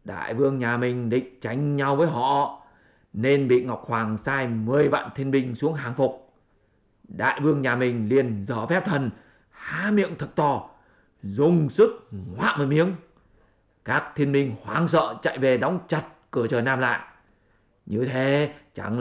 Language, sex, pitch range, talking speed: English, male, 120-155 Hz, 170 wpm